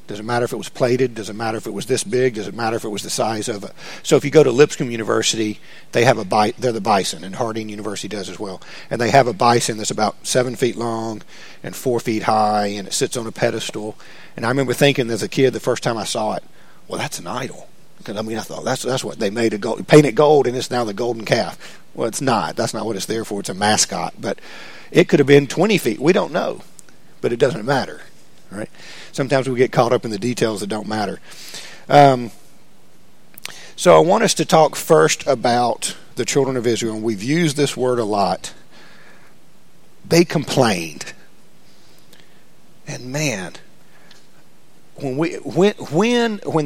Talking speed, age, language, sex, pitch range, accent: 220 wpm, 50-69, English, male, 110-145 Hz, American